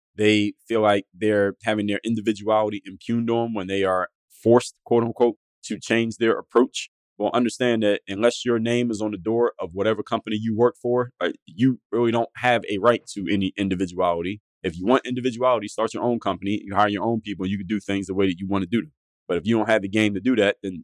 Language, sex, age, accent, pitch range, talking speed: English, male, 30-49, American, 95-115 Hz, 230 wpm